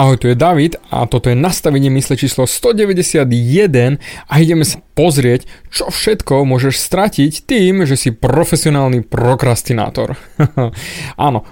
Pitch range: 130-170 Hz